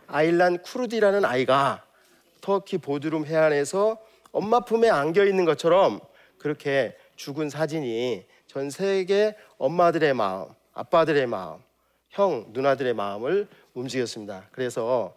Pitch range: 140-205 Hz